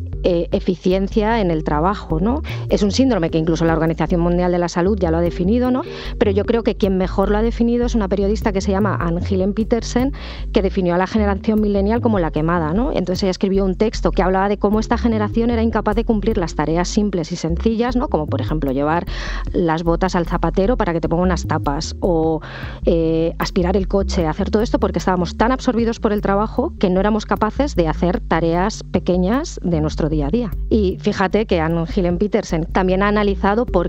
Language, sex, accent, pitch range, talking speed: Spanish, female, Spanish, 170-210 Hz, 215 wpm